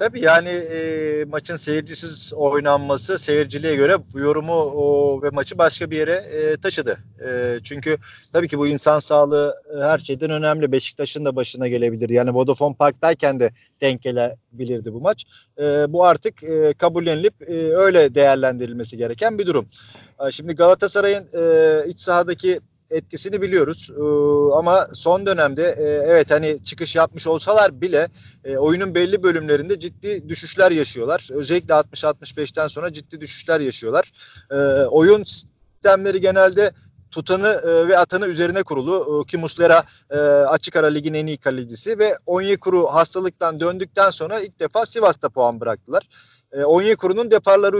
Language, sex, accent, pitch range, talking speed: Turkish, male, native, 145-185 Hz, 145 wpm